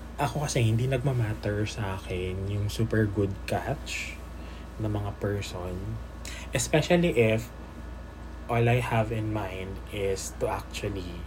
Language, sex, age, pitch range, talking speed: Filipino, male, 20-39, 80-110 Hz, 120 wpm